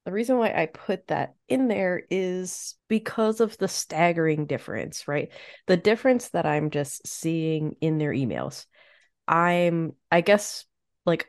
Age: 30-49